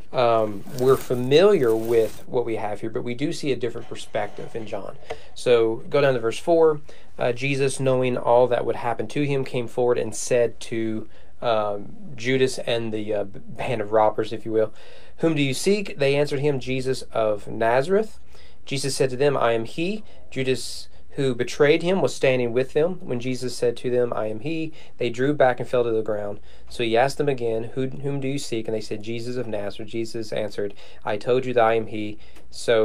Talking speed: 210 wpm